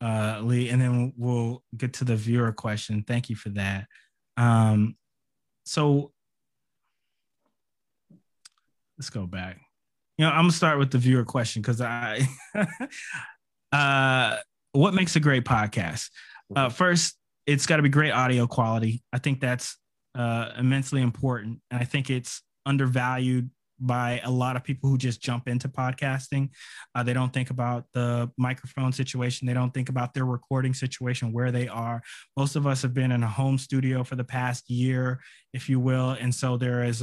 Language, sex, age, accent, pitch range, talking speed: English, male, 20-39, American, 120-135 Hz, 170 wpm